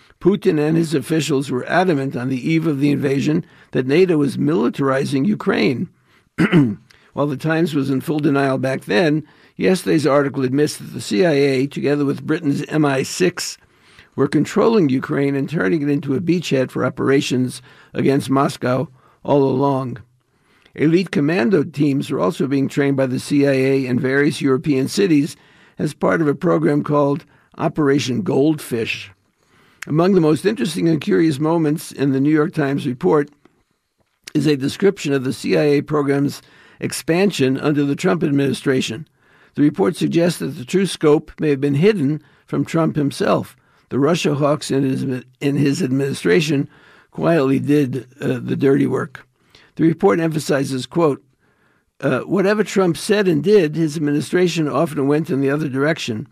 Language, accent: English, American